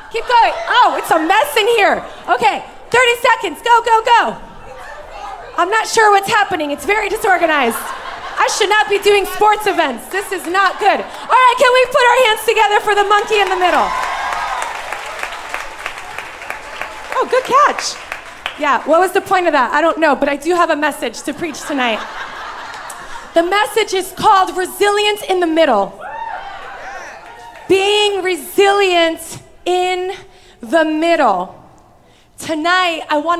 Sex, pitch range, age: female, 320-415 Hz, 30-49